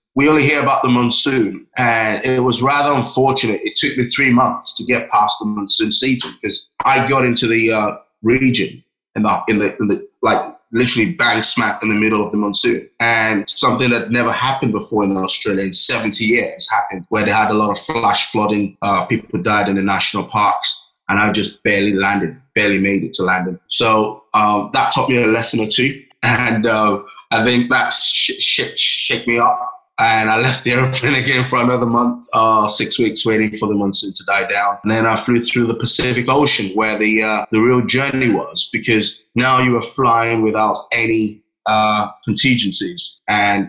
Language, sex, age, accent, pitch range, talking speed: English, male, 20-39, British, 105-125 Hz, 195 wpm